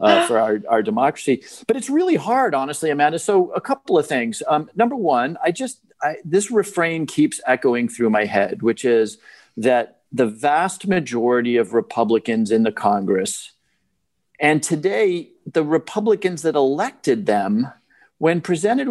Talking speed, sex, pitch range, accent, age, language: 155 wpm, male, 135-220 Hz, American, 50-69, English